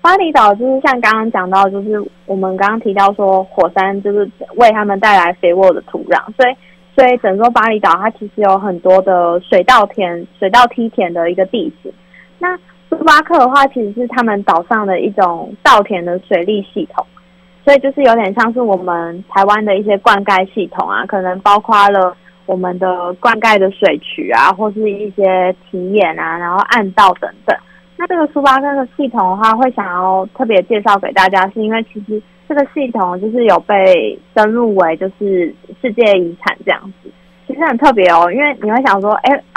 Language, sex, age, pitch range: Chinese, female, 20-39, 185-235 Hz